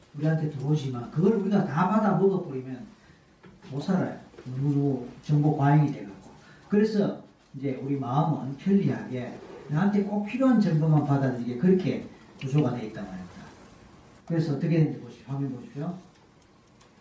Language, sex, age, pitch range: Korean, male, 40-59, 145-205 Hz